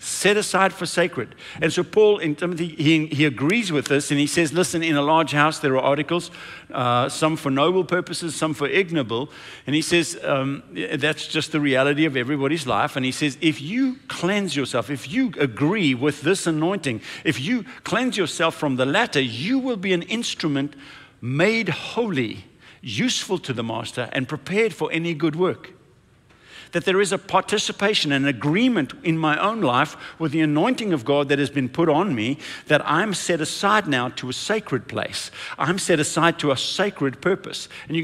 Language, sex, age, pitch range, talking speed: English, male, 50-69, 135-180 Hz, 185 wpm